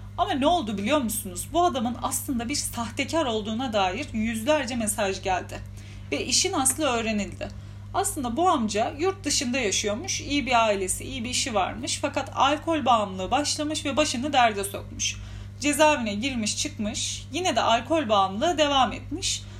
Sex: female